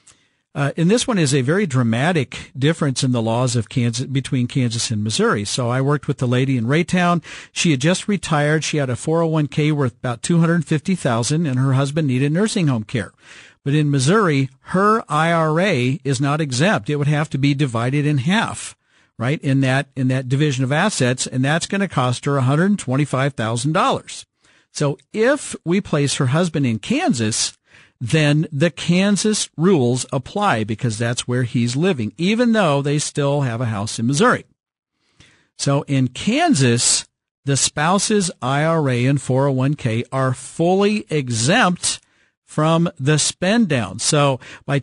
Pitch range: 130-175 Hz